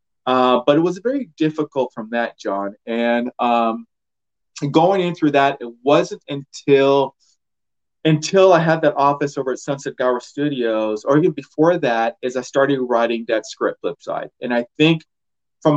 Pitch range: 125-160 Hz